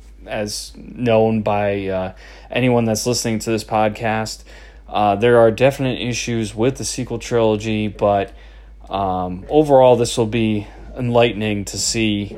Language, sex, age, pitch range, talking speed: English, male, 20-39, 100-120 Hz, 135 wpm